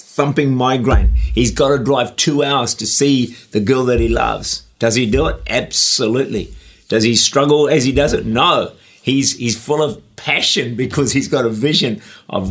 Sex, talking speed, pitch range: male, 185 wpm, 110-145 Hz